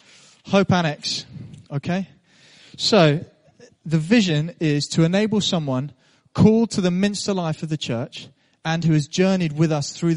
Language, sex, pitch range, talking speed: English, male, 135-165 Hz, 150 wpm